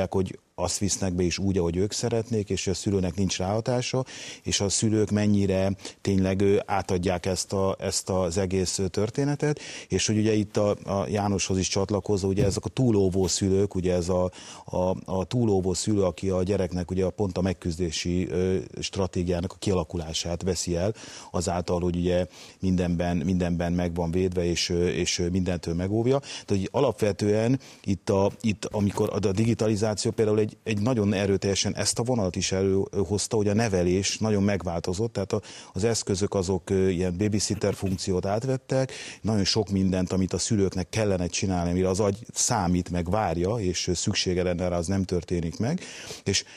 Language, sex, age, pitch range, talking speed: Hungarian, male, 30-49, 90-105 Hz, 160 wpm